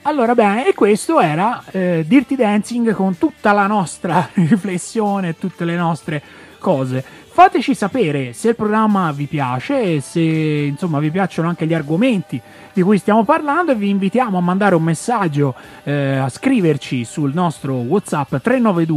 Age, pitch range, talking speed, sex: 30-49, 145-225 Hz, 150 wpm, male